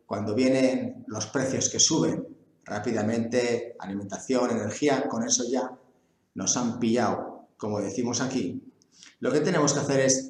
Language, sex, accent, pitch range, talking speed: English, male, Spanish, 110-130 Hz, 140 wpm